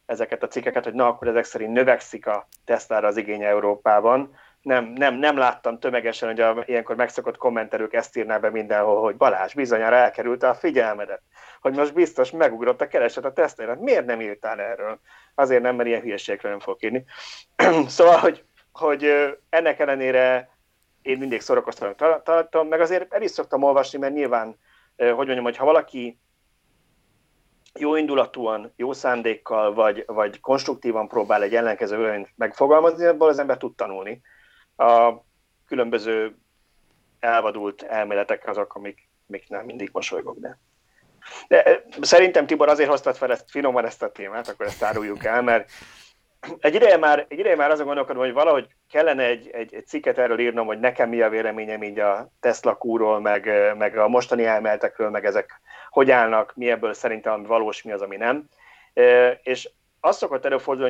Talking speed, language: 165 wpm, Hungarian